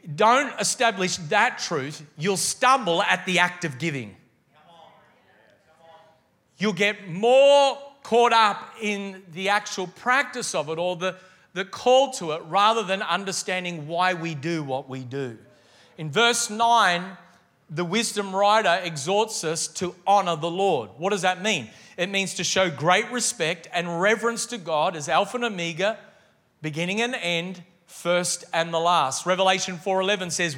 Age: 40-59